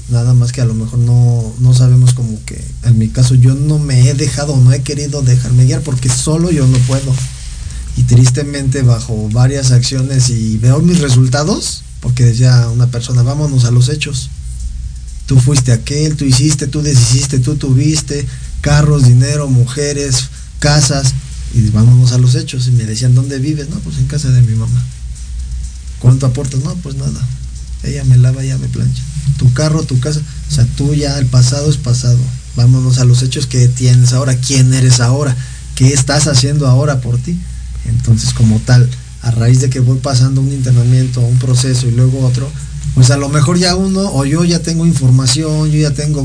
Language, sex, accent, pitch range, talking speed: Spanish, male, Mexican, 120-140 Hz, 190 wpm